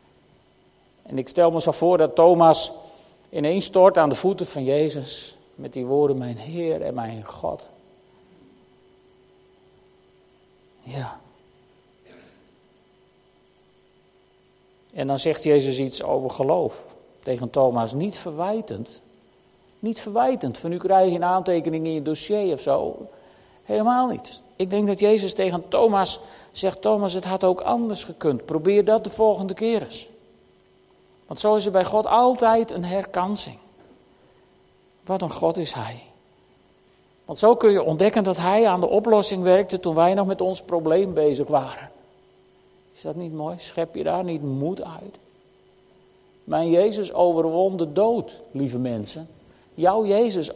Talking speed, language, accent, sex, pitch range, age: 140 wpm, Dutch, Dutch, male, 155-210 Hz, 50-69